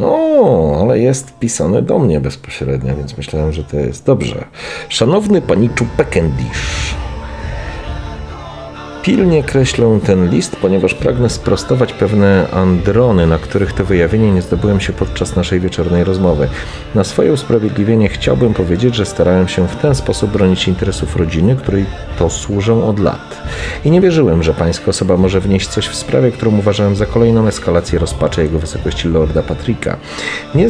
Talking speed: 150 wpm